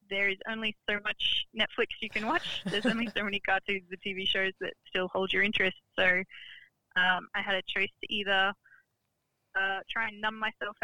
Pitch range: 185-215 Hz